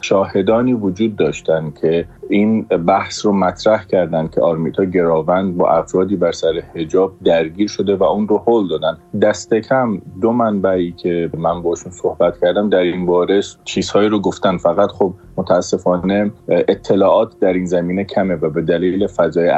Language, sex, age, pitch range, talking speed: Persian, male, 30-49, 90-110 Hz, 155 wpm